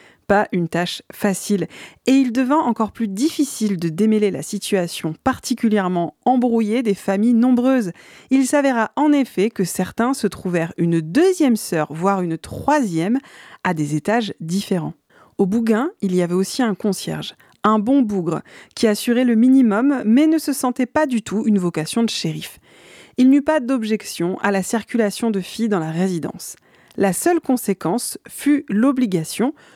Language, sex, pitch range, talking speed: French, female, 180-250 Hz, 160 wpm